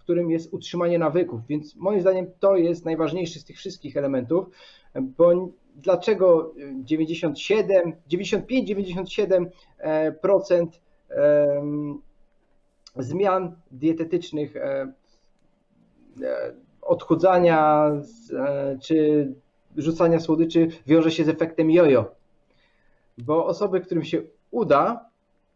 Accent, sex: native, male